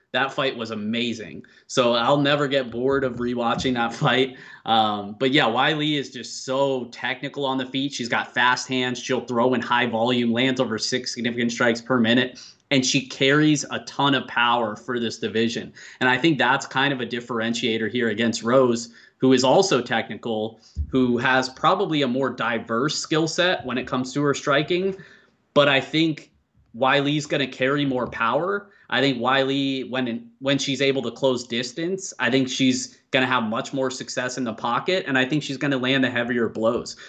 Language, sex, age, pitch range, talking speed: English, male, 20-39, 120-140 Hz, 195 wpm